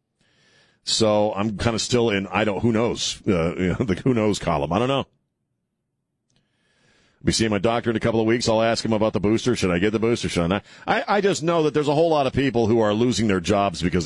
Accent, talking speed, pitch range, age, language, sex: American, 260 wpm, 100-135 Hz, 40-59, English, male